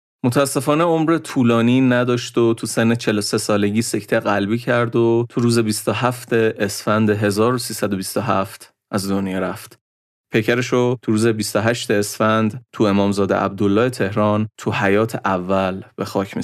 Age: 30-49